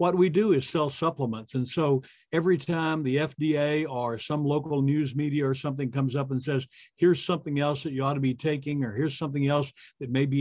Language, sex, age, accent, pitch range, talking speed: English, male, 60-79, American, 130-155 Hz, 225 wpm